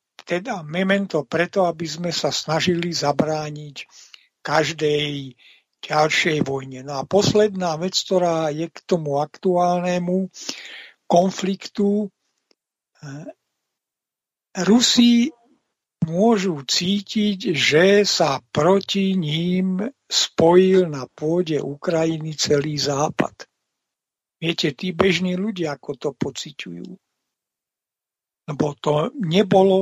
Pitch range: 150-185 Hz